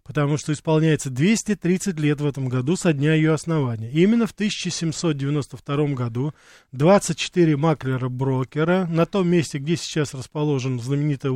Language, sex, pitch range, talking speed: Russian, male, 145-185 Hz, 130 wpm